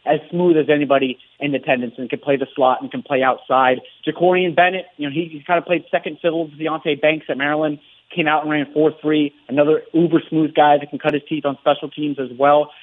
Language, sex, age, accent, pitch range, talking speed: English, male, 30-49, American, 130-155 Hz, 235 wpm